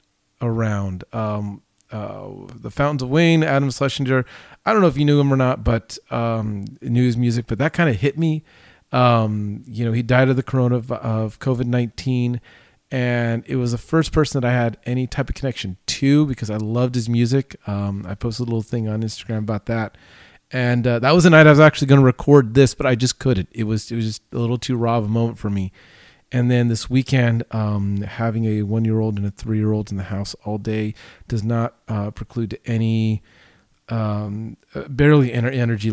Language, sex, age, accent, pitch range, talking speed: English, male, 30-49, American, 105-125 Hz, 205 wpm